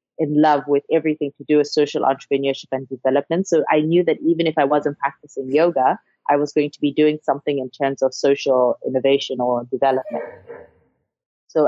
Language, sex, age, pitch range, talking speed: English, female, 20-39, 140-170 Hz, 185 wpm